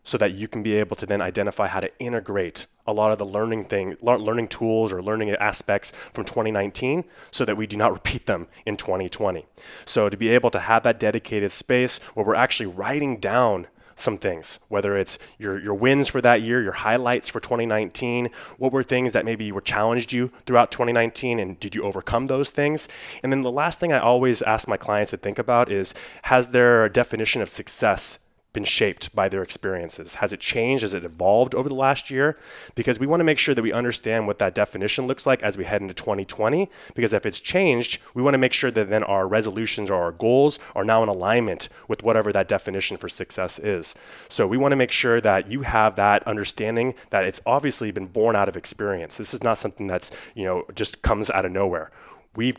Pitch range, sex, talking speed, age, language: 105-130 Hz, male, 215 wpm, 20-39, English